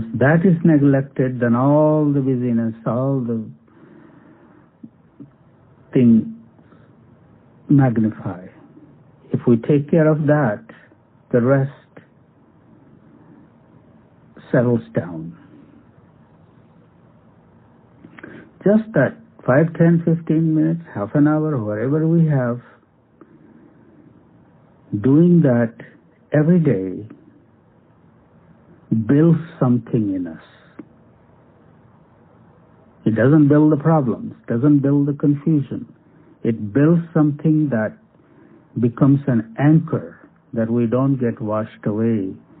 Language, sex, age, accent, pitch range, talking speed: English, male, 60-79, Indian, 115-150 Hz, 90 wpm